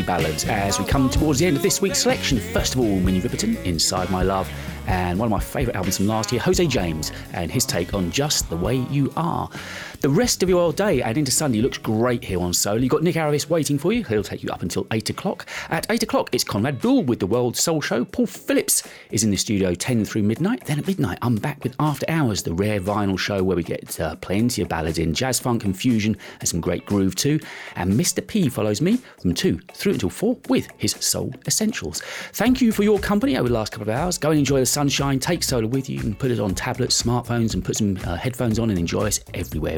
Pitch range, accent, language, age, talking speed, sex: 95-145 Hz, British, English, 30-49, 250 wpm, male